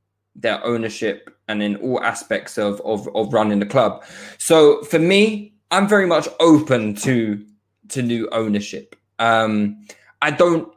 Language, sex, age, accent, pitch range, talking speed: English, male, 20-39, British, 105-145 Hz, 145 wpm